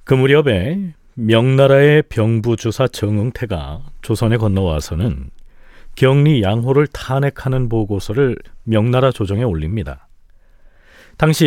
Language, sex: Korean, male